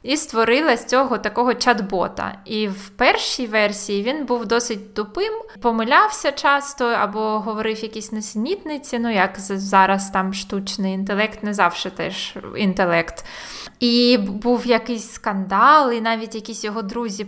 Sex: female